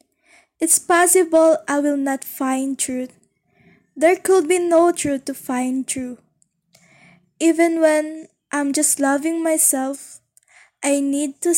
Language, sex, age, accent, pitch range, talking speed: English, female, 20-39, Filipino, 260-320 Hz, 125 wpm